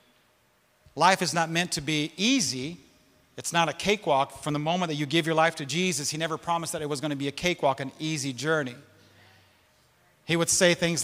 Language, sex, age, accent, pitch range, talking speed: English, male, 40-59, American, 150-185 Hz, 210 wpm